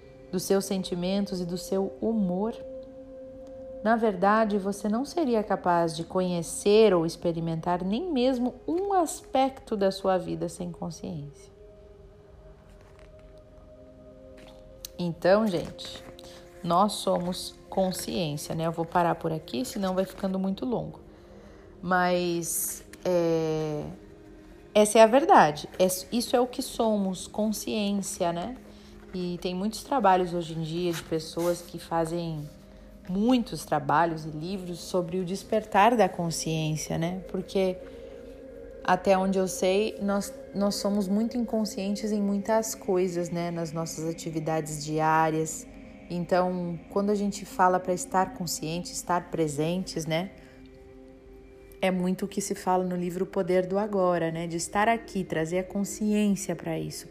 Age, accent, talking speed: 40-59, Brazilian, 130 wpm